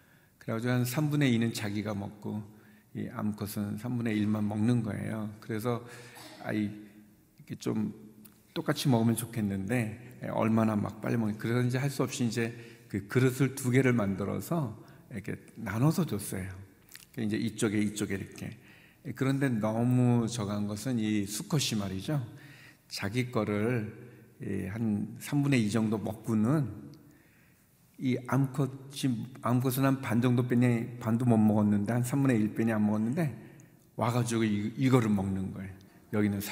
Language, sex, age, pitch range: Korean, male, 60-79, 105-130 Hz